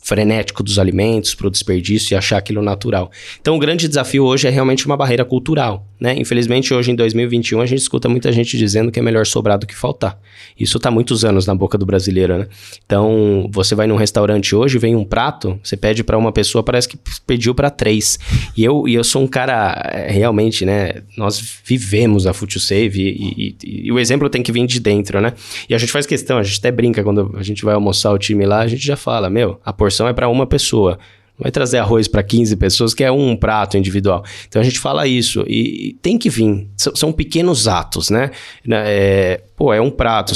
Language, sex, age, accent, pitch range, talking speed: Portuguese, male, 20-39, Brazilian, 100-120 Hz, 225 wpm